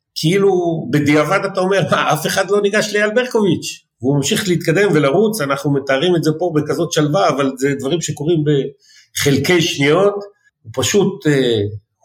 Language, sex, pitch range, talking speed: Hebrew, male, 115-160 Hz, 155 wpm